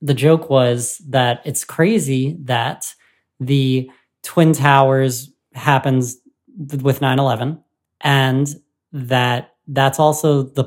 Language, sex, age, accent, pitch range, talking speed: English, male, 20-39, American, 125-145 Hz, 100 wpm